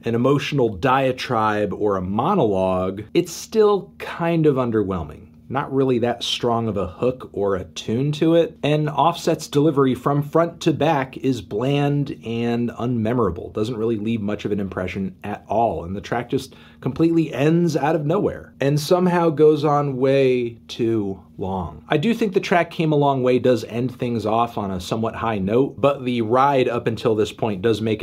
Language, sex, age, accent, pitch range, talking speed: English, male, 40-59, American, 115-150 Hz, 185 wpm